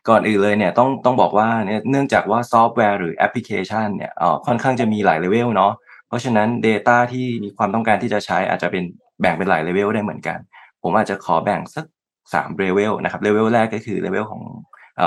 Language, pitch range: Thai, 95-115 Hz